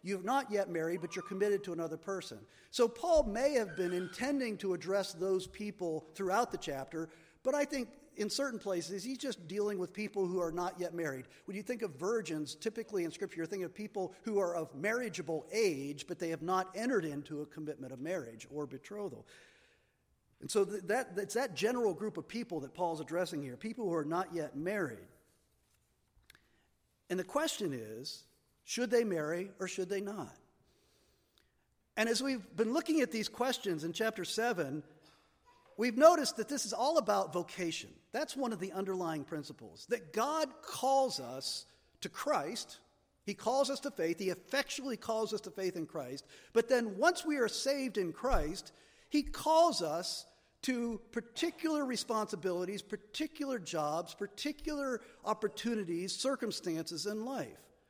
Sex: male